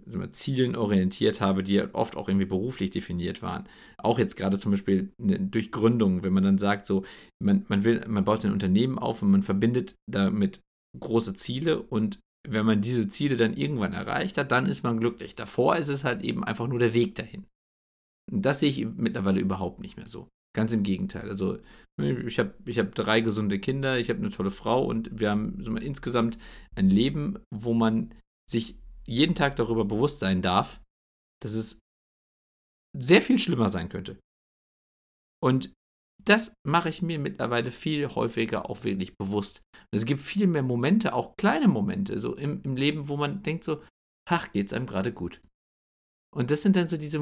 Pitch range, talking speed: 100-150 Hz, 185 wpm